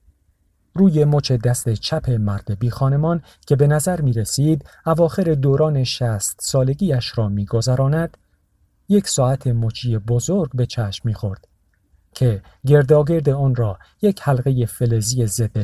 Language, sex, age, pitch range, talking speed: Persian, male, 50-69, 105-145 Hz, 125 wpm